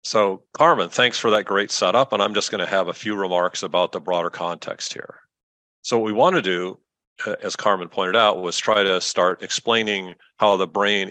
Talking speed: 210 wpm